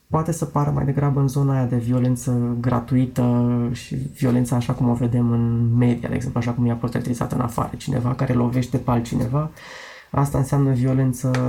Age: 20-39